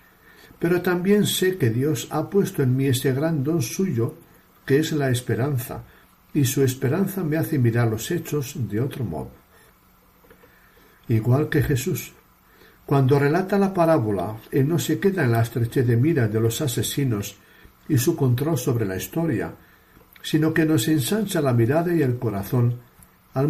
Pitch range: 115-155 Hz